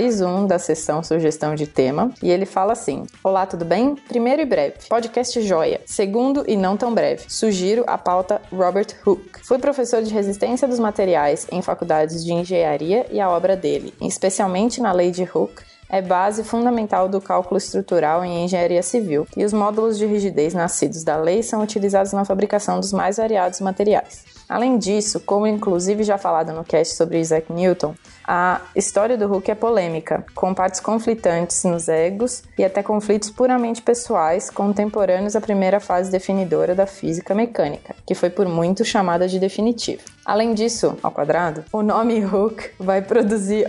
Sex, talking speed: female, 170 wpm